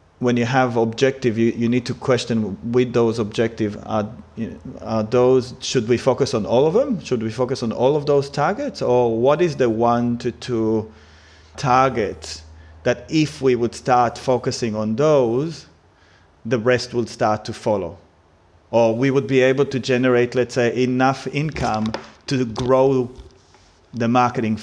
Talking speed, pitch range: 165 wpm, 110-125 Hz